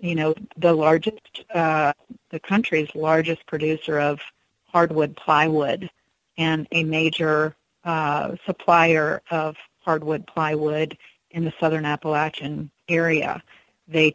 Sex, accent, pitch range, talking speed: female, American, 155-170 Hz, 110 wpm